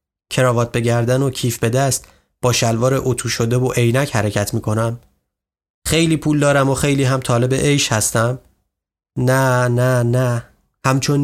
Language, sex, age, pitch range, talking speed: Persian, male, 30-49, 115-145 Hz, 150 wpm